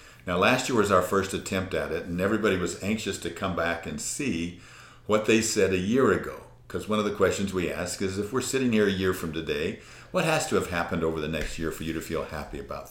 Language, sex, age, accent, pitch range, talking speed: English, male, 50-69, American, 85-110 Hz, 255 wpm